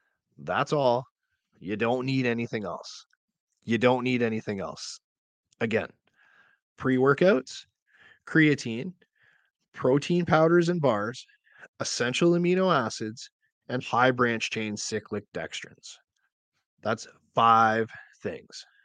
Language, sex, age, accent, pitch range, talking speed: English, male, 30-49, American, 115-155 Hz, 100 wpm